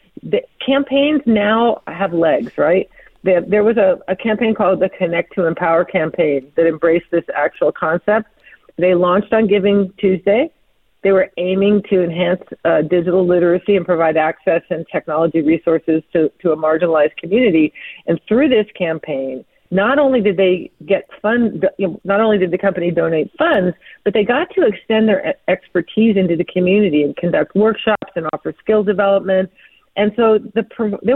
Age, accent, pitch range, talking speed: 40-59, American, 175-225 Hz, 155 wpm